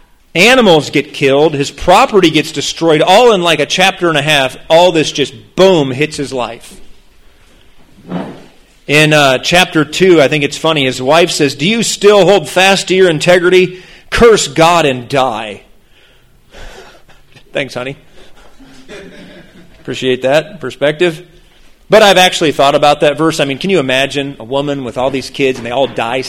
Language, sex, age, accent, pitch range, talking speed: English, male, 40-59, American, 130-170 Hz, 165 wpm